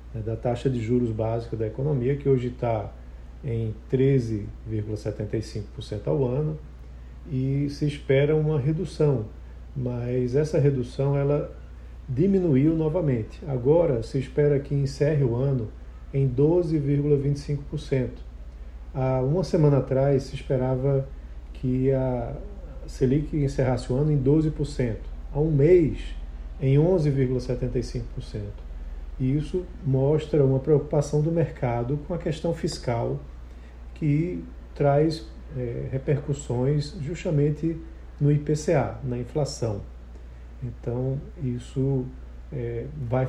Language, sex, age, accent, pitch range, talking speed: Portuguese, male, 40-59, Brazilian, 115-145 Hz, 100 wpm